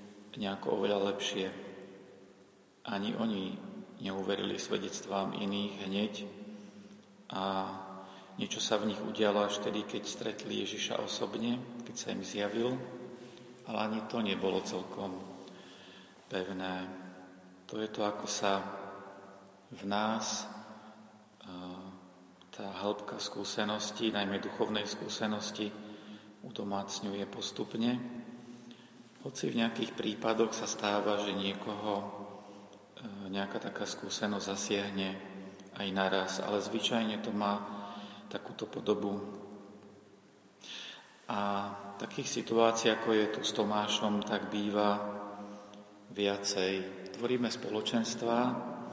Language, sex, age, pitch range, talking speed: Slovak, male, 40-59, 100-110 Hz, 100 wpm